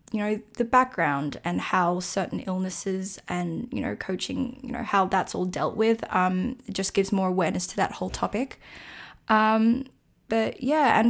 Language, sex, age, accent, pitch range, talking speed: English, female, 10-29, Australian, 180-220 Hz, 175 wpm